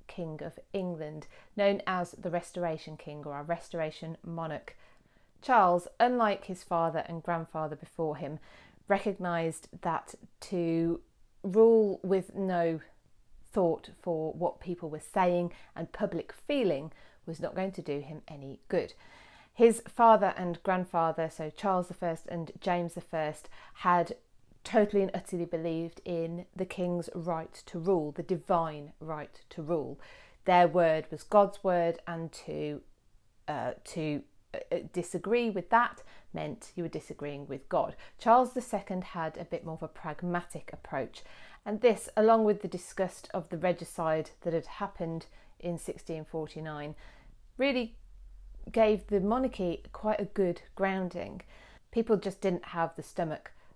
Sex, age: female, 30-49